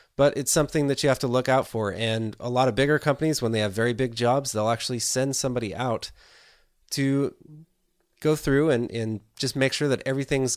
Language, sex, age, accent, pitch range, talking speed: English, male, 30-49, American, 110-135 Hz, 210 wpm